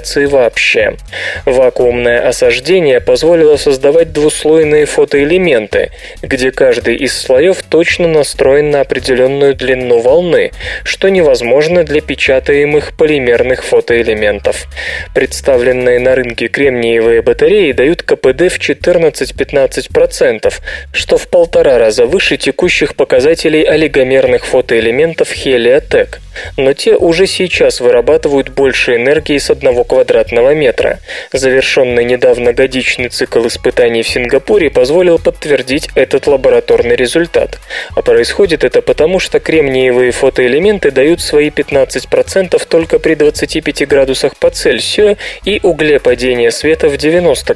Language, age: Russian, 20-39